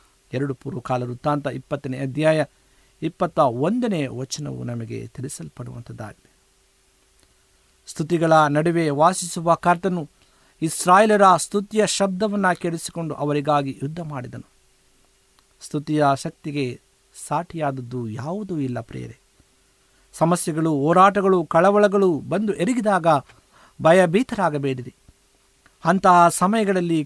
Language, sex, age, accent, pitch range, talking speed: Kannada, male, 50-69, native, 130-175 Hz, 80 wpm